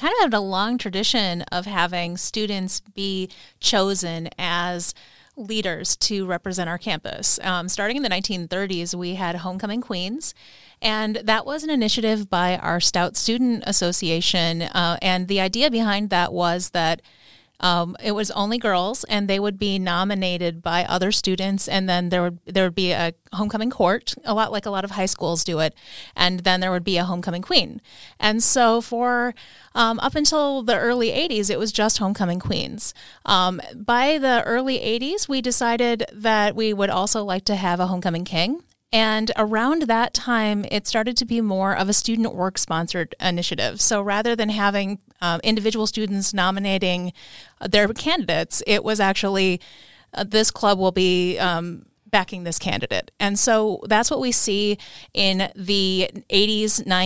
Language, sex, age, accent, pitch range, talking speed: English, female, 30-49, American, 180-220 Hz, 170 wpm